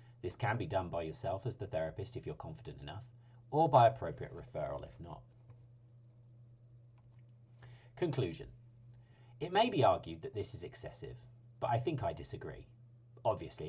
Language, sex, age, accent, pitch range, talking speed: English, male, 40-59, British, 110-130 Hz, 150 wpm